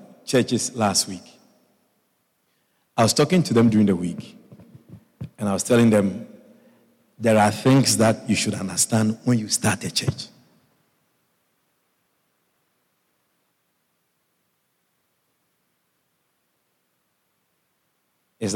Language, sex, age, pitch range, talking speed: English, male, 50-69, 120-145 Hz, 95 wpm